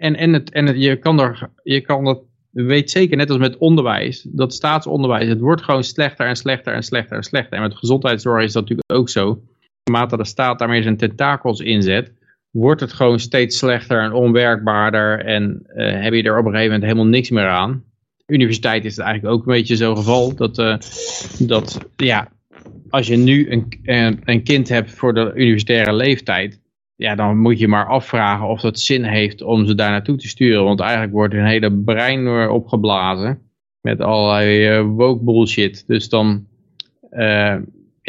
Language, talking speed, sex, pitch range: Dutch, 190 wpm, male, 110-125 Hz